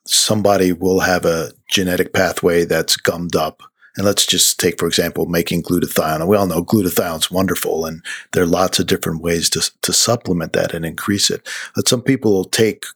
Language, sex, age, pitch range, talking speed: English, male, 50-69, 95-110 Hz, 190 wpm